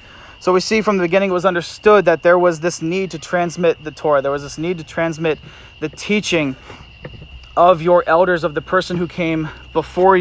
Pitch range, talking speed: 150-180 Hz, 205 wpm